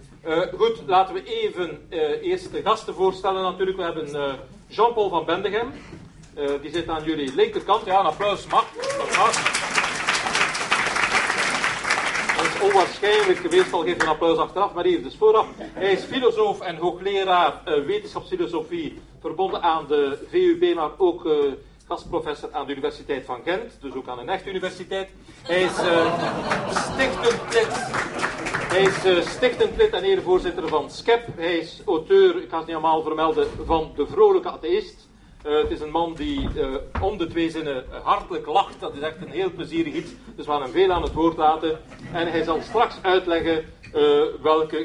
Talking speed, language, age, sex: 165 wpm, Dutch, 40-59, male